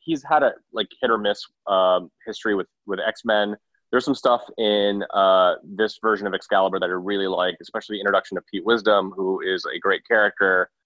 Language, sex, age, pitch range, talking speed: English, male, 30-49, 100-115 Hz, 200 wpm